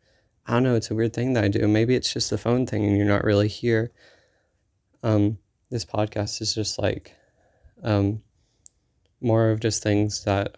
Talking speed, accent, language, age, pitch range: 185 wpm, American, English, 20-39, 100-115 Hz